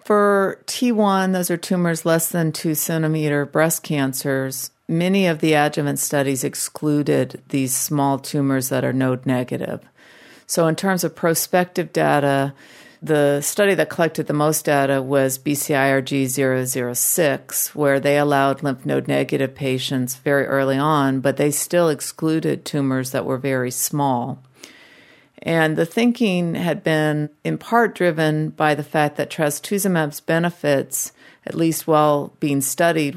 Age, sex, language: 50-69, female, English